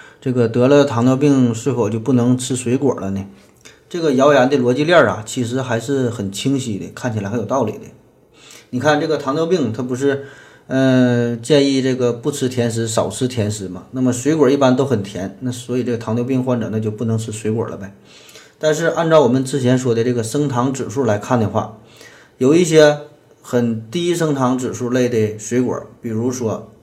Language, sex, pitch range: Chinese, male, 110-135 Hz